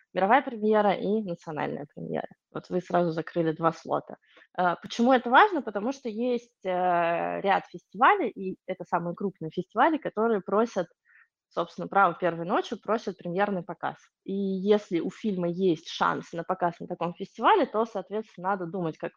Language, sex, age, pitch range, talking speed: Russian, female, 20-39, 170-215 Hz, 155 wpm